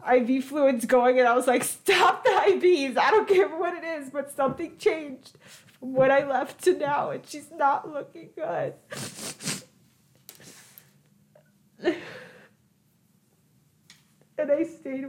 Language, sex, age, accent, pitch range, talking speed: English, female, 30-49, American, 240-315 Hz, 130 wpm